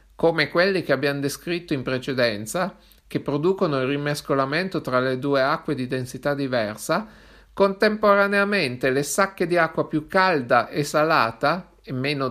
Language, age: Italian, 50-69